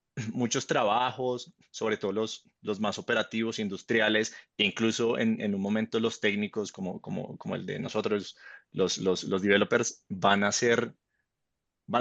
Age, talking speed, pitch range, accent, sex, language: 30-49, 155 wpm, 100-115 Hz, Colombian, male, Spanish